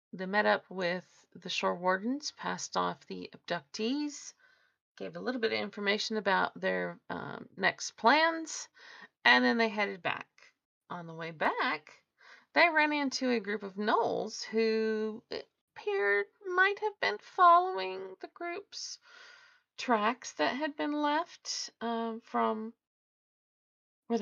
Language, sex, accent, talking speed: English, female, American, 135 wpm